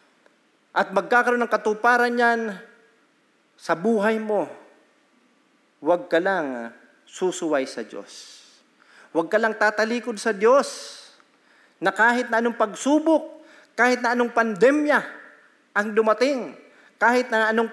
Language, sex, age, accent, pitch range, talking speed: Filipino, male, 40-59, native, 165-240 Hz, 115 wpm